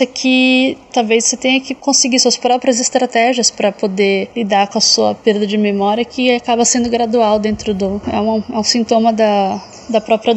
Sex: female